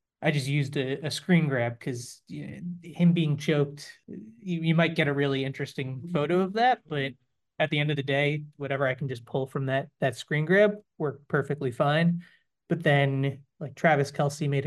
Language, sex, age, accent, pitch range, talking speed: English, male, 30-49, American, 135-160 Hz, 200 wpm